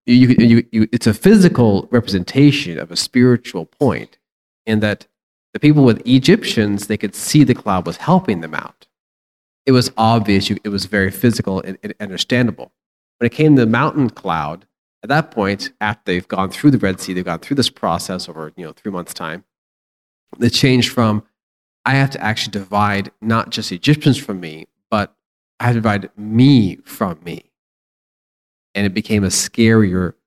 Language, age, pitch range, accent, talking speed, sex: English, 40-59, 95-120 Hz, American, 180 wpm, male